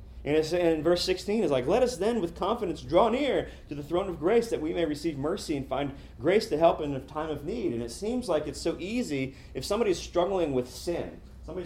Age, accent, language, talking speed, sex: 30-49, American, English, 245 wpm, male